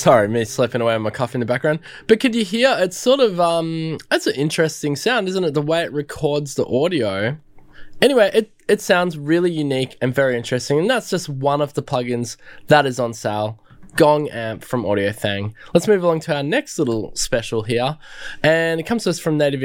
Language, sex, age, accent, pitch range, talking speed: English, male, 20-39, Australian, 115-165 Hz, 215 wpm